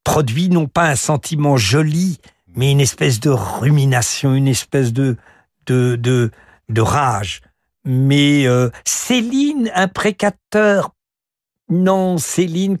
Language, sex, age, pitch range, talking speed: French, male, 60-79, 135-175 Hz, 115 wpm